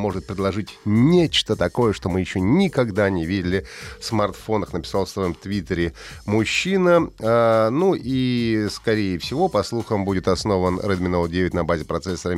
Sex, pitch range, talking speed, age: male, 90-115 Hz, 150 wpm, 30-49